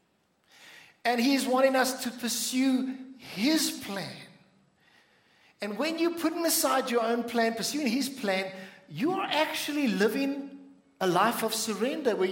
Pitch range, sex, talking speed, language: 180-240 Hz, male, 135 wpm, English